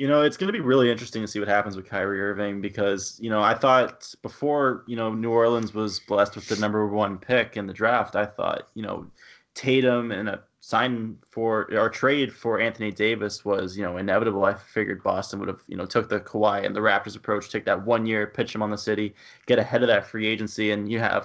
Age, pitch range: 20-39, 105-125 Hz